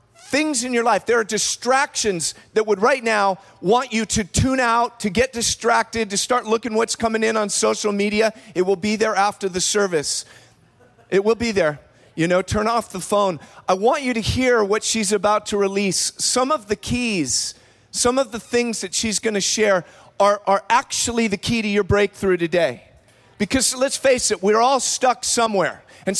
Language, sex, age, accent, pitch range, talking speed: English, male, 40-59, American, 185-230 Hz, 195 wpm